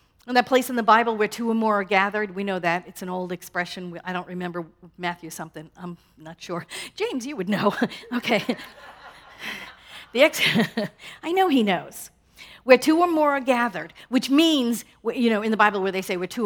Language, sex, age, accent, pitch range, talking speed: English, female, 50-69, American, 195-260 Hz, 205 wpm